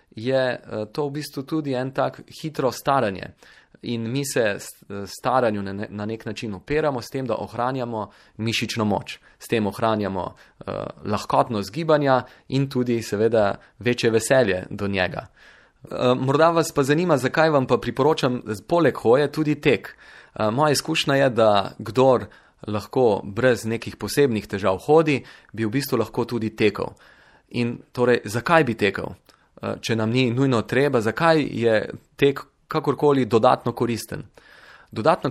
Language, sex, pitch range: Italian, male, 110-140 Hz